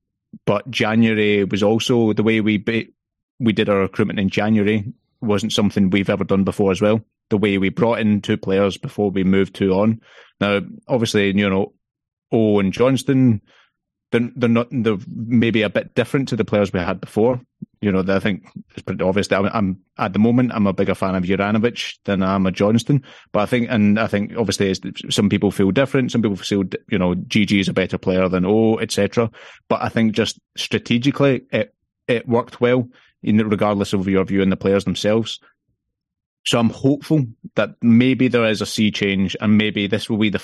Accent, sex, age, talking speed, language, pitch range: British, male, 30-49, 200 wpm, English, 100-115 Hz